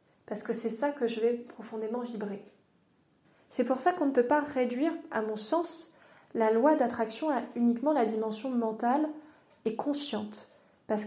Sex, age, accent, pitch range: female, 20-39, French, 230-295 Hz